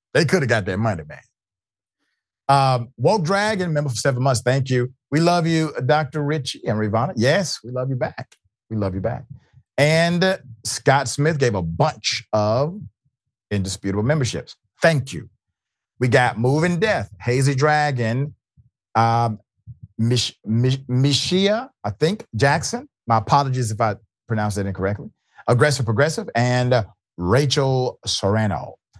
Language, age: English, 40-59